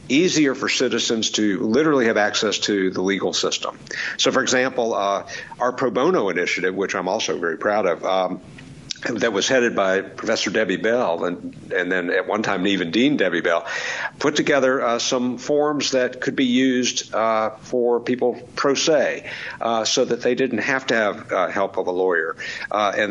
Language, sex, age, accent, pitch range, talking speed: English, male, 50-69, American, 100-130 Hz, 185 wpm